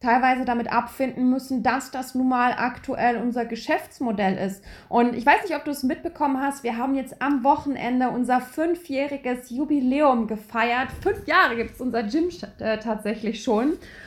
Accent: German